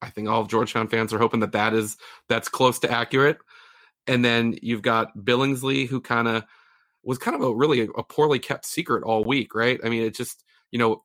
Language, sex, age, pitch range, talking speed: English, male, 30-49, 105-120 Hz, 225 wpm